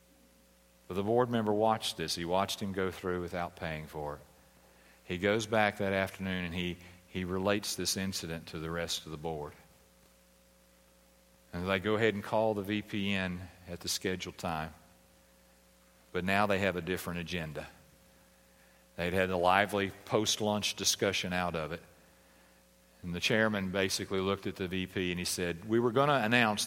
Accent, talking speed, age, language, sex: American, 175 wpm, 40-59, English, male